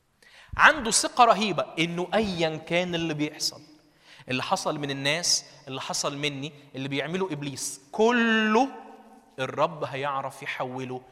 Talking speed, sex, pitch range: 120 wpm, male, 145-215 Hz